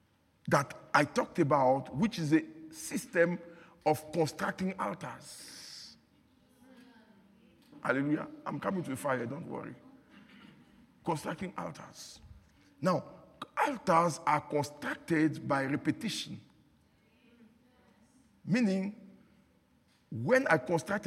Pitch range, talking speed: 155-225 Hz, 90 wpm